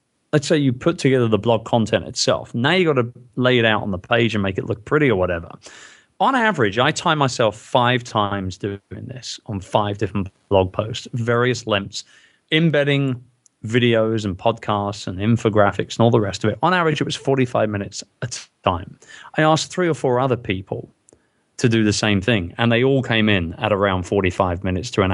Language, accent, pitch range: English, British, 100-130 Hz